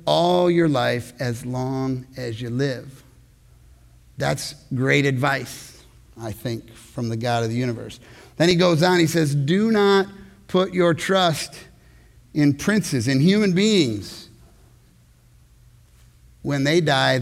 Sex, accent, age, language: male, American, 50-69, English